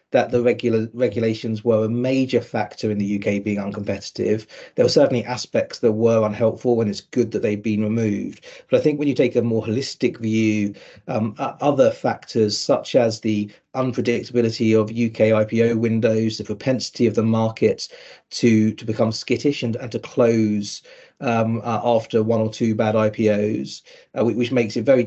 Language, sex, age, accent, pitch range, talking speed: English, male, 40-59, British, 110-125 Hz, 180 wpm